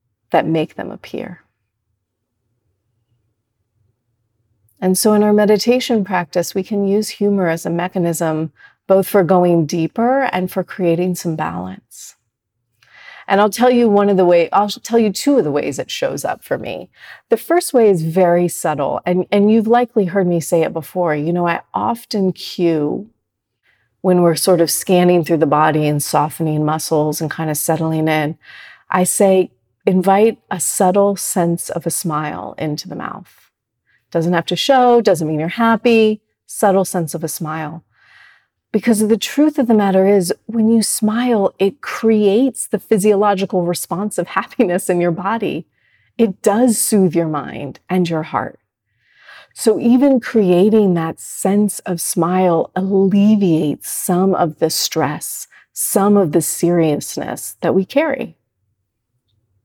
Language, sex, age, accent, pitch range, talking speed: English, female, 40-59, American, 155-210 Hz, 155 wpm